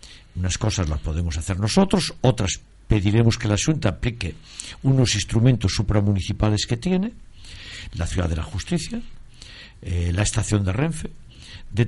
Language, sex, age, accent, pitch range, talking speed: Spanish, male, 60-79, Spanish, 100-155 Hz, 140 wpm